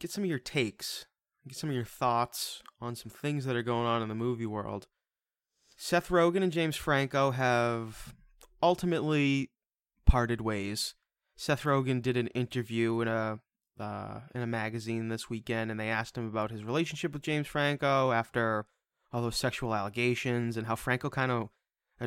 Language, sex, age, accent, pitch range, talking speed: English, male, 20-39, American, 115-145 Hz, 170 wpm